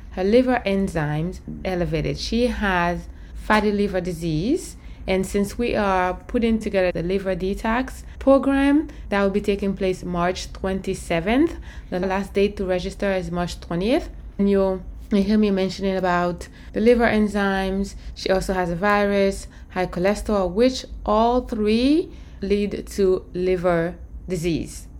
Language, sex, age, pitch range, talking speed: English, female, 20-39, 175-215 Hz, 135 wpm